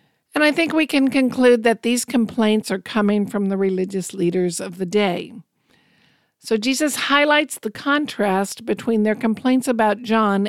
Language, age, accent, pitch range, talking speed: English, 50-69, American, 190-245 Hz, 160 wpm